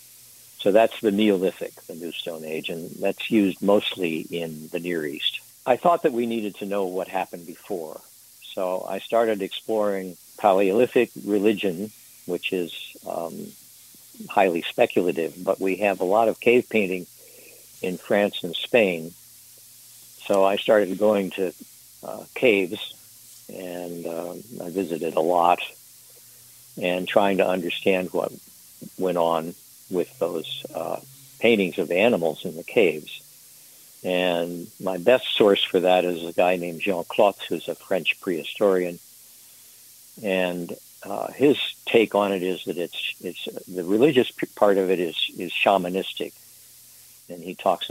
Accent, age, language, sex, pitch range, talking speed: American, 60-79, English, male, 90-105 Hz, 145 wpm